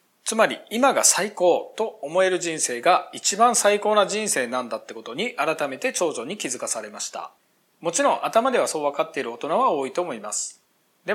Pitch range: 155-225 Hz